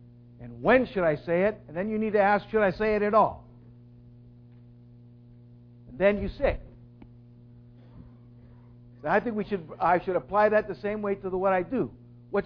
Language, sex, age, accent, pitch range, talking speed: English, male, 60-79, American, 120-200 Hz, 195 wpm